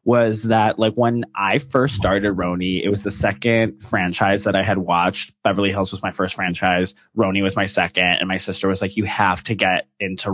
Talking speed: 215 wpm